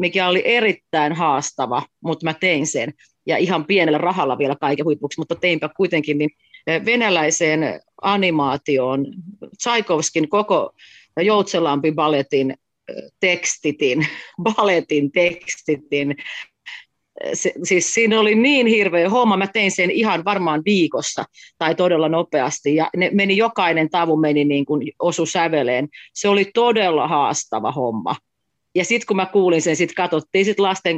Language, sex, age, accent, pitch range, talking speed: Finnish, female, 40-59, native, 150-190 Hz, 130 wpm